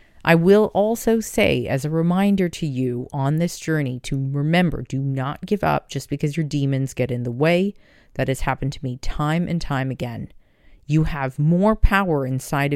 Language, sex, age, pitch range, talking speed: English, female, 40-59, 135-180 Hz, 190 wpm